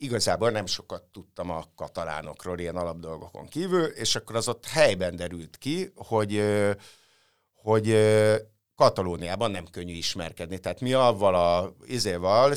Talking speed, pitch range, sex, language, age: 125 wpm, 90-110 Hz, male, Hungarian, 60-79